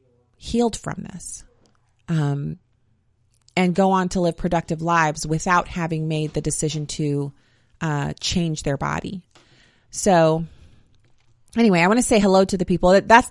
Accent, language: American, English